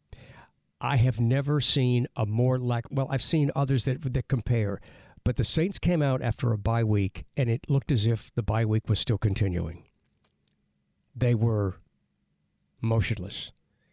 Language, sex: English, male